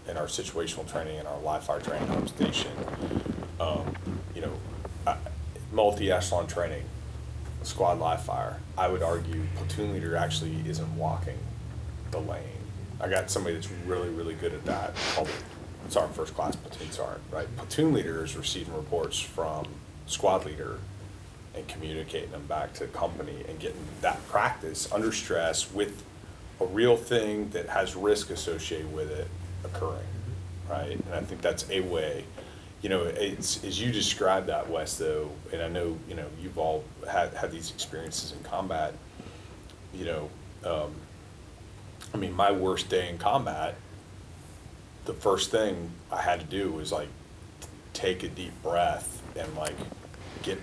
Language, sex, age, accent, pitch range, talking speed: English, male, 30-49, American, 80-100 Hz, 155 wpm